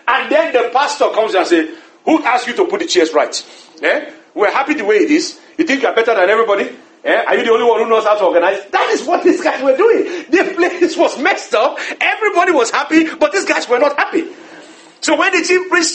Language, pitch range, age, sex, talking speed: English, 230-345 Hz, 50-69, male, 245 wpm